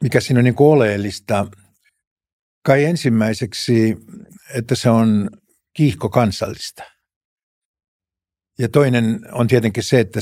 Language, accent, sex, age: Finnish, native, male, 60-79